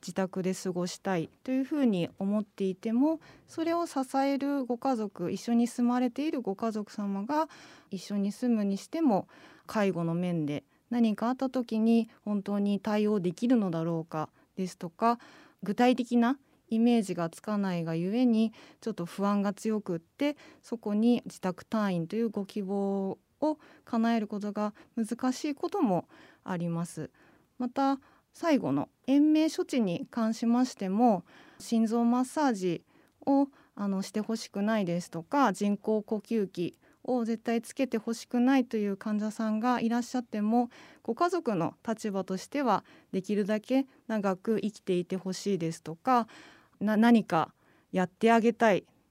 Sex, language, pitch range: female, Japanese, 195-255 Hz